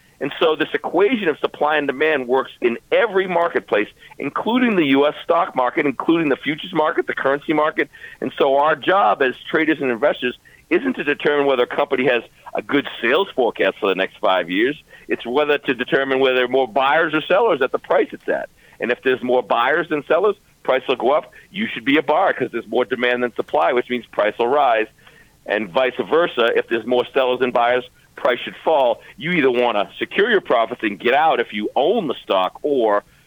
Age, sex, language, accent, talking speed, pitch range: 50-69, male, English, American, 215 wpm, 120-150 Hz